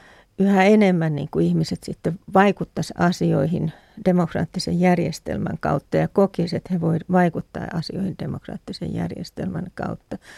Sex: female